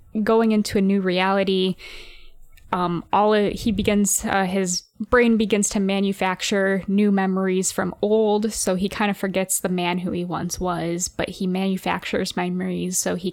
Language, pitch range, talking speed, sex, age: English, 180-210 Hz, 165 wpm, female, 10-29